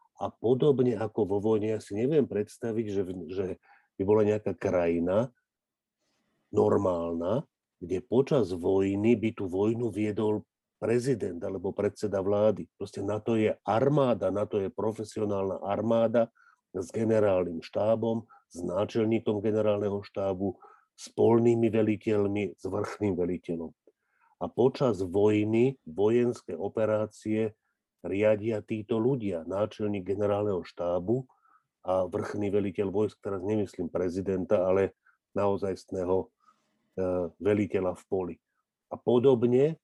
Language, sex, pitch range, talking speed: Slovak, male, 100-110 Hz, 110 wpm